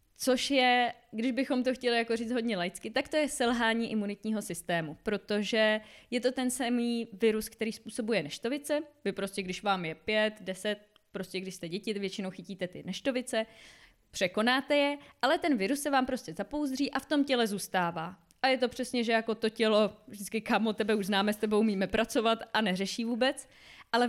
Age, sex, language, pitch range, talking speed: 20-39, female, Czech, 200-245 Hz, 190 wpm